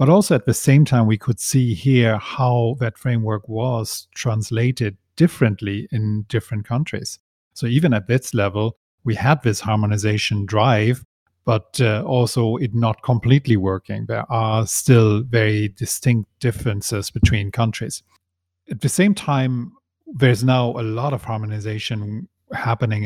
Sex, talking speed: male, 145 wpm